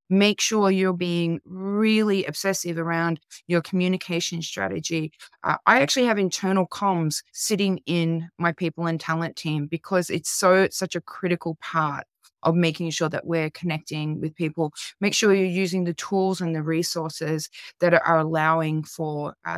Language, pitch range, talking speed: English, 160-185 Hz, 160 wpm